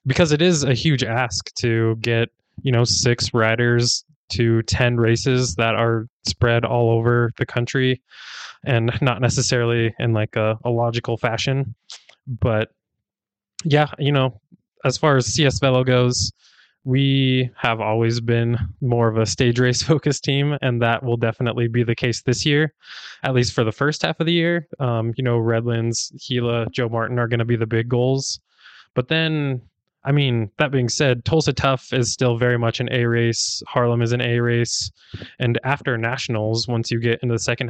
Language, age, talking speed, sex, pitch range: English, 20-39, 180 wpm, male, 115-130 Hz